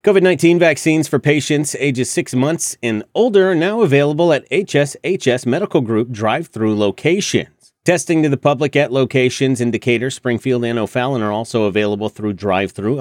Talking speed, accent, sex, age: 165 wpm, American, male, 30-49